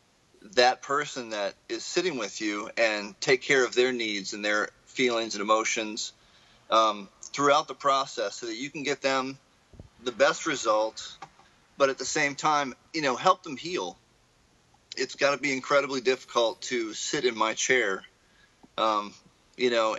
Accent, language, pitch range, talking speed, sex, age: American, English, 115-155 Hz, 165 wpm, male, 30-49